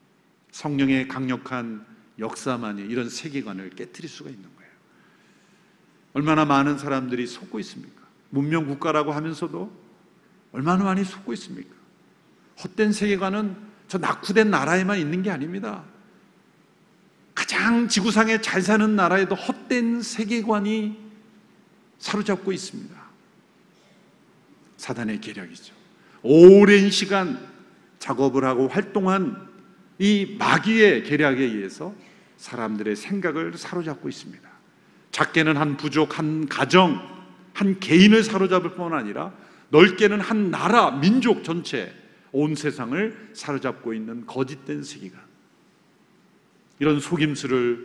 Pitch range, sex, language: 140-200 Hz, male, Korean